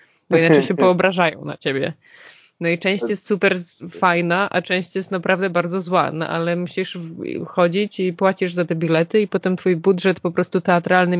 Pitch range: 170-195 Hz